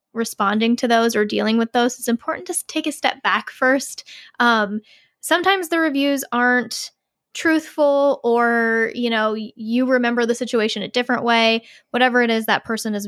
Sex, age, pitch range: female, 10-29, 215-250 Hz